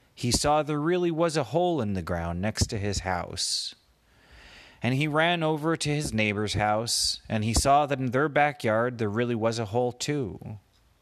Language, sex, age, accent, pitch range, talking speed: English, male, 30-49, American, 100-145 Hz, 190 wpm